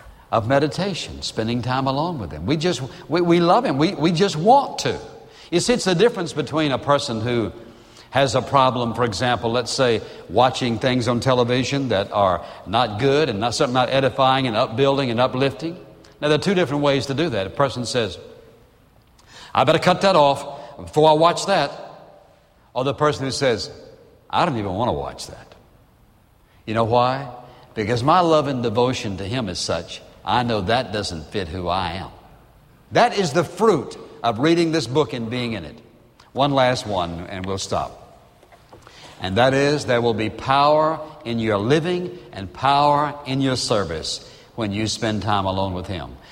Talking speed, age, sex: 185 wpm, 60-79, male